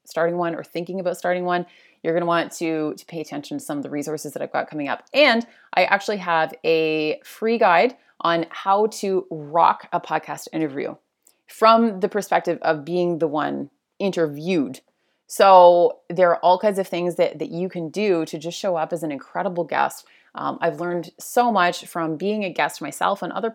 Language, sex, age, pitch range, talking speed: English, female, 30-49, 165-205 Hz, 200 wpm